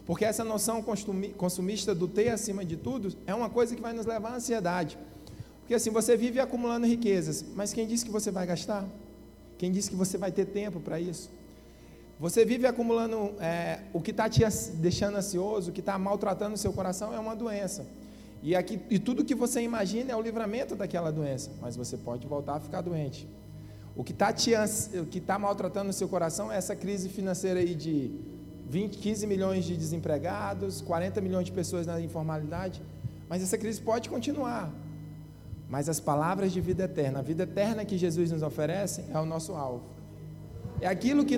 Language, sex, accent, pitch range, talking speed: Portuguese, male, Brazilian, 170-225 Hz, 185 wpm